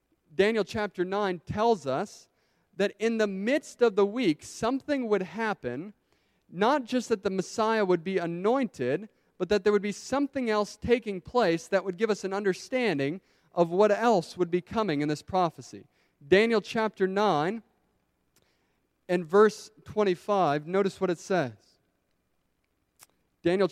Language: English